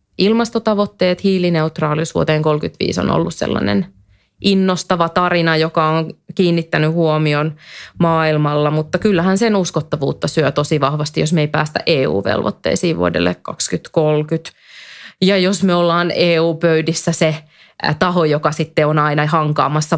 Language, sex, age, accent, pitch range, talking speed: Finnish, female, 20-39, native, 145-180 Hz, 120 wpm